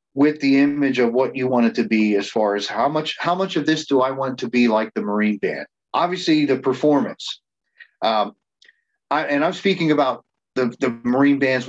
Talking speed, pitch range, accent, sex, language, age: 210 wpm, 115-140 Hz, American, male, English, 40-59